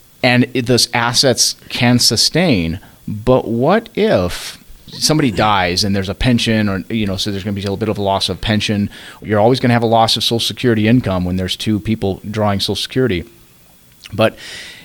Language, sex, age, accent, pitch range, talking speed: English, male, 30-49, American, 100-120 Hz, 200 wpm